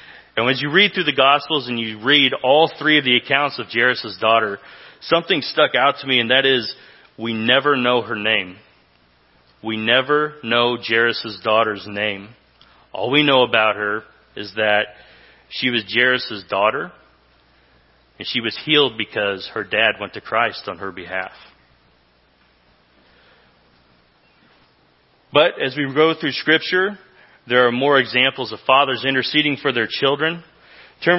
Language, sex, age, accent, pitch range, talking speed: English, male, 30-49, American, 105-140 Hz, 150 wpm